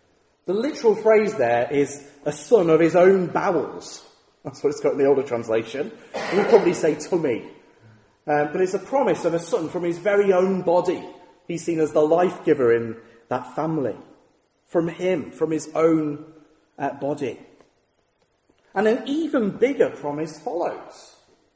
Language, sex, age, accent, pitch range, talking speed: English, male, 30-49, British, 135-220 Hz, 160 wpm